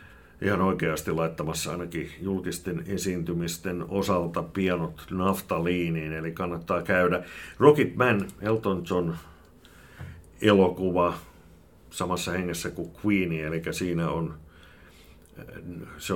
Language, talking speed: Finnish, 95 wpm